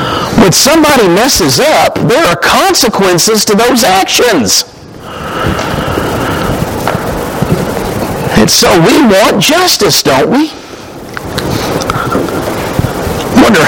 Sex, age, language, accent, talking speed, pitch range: male, 50-69, English, American, 85 wpm, 125-170 Hz